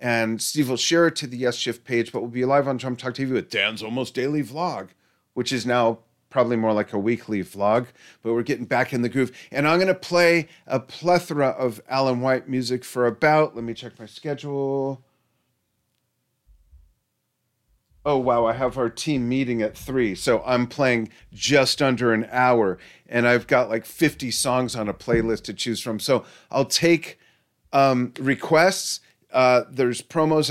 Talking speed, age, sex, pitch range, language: 180 wpm, 40-59, male, 115-135 Hz, English